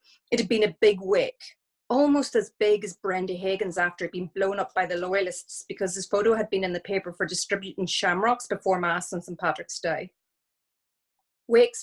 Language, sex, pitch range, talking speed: English, female, 185-245 Hz, 190 wpm